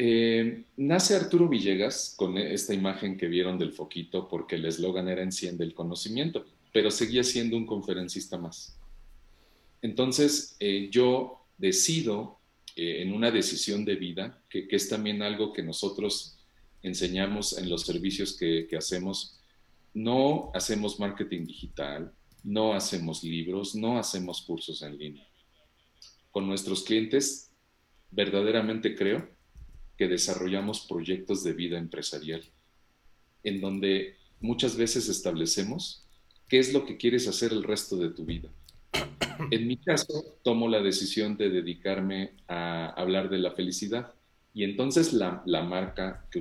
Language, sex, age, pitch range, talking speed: Spanish, male, 40-59, 85-115 Hz, 135 wpm